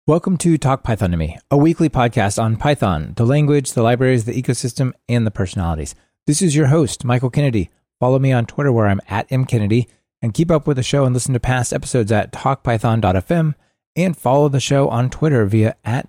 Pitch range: 100-135 Hz